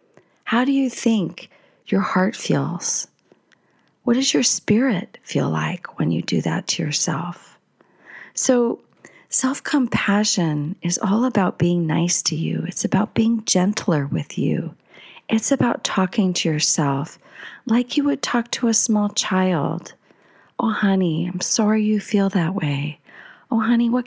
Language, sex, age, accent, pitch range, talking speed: English, female, 40-59, American, 160-210 Hz, 145 wpm